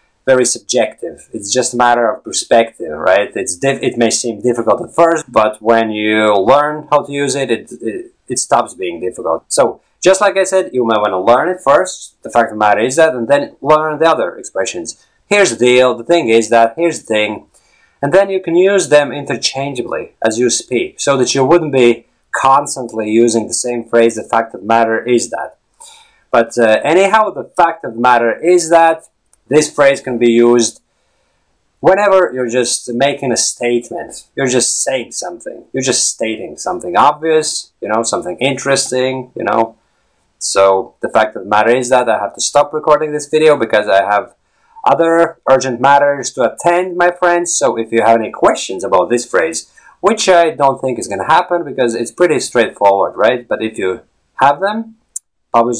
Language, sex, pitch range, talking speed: English, male, 115-160 Hz, 195 wpm